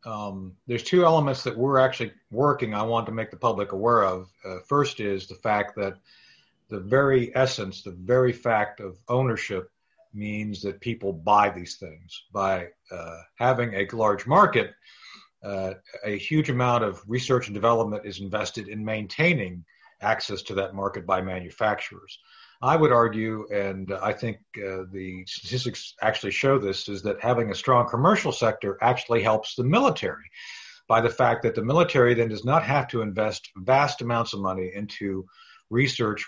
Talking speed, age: 165 wpm, 50-69